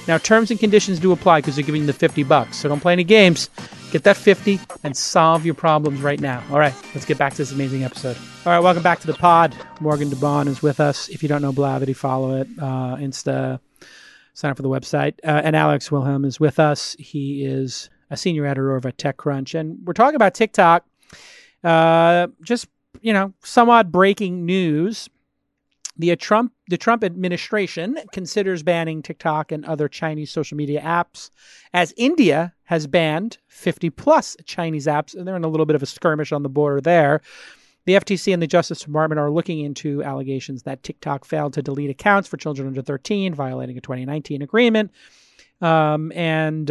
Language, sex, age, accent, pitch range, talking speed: English, male, 40-59, American, 145-175 Hz, 195 wpm